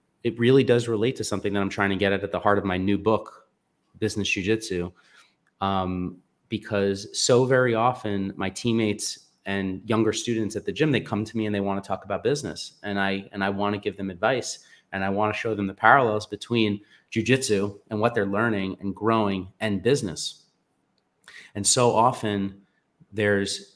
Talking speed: 190 wpm